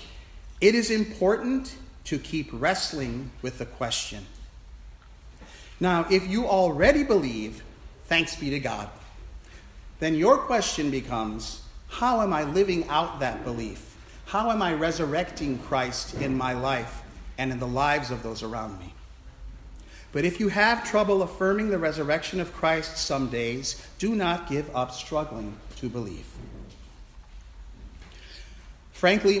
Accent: American